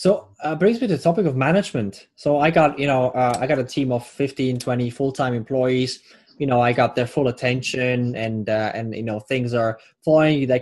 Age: 20-39